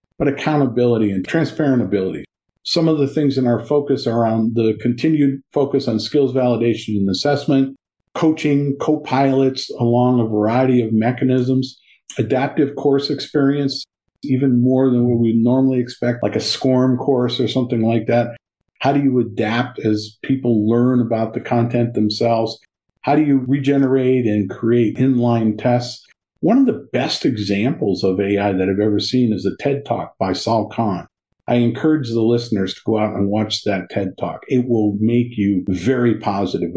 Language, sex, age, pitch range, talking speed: English, male, 50-69, 110-135 Hz, 165 wpm